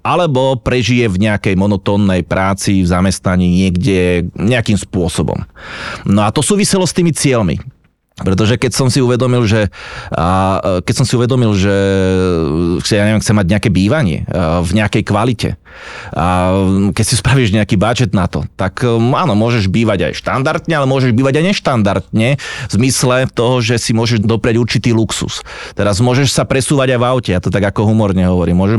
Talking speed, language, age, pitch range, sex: 165 wpm, Slovak, 30-49, 95-130 Hz, male